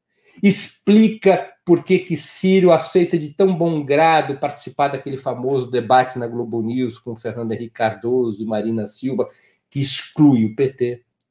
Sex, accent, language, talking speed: male, Brazilian, Portuguese, 150 wpm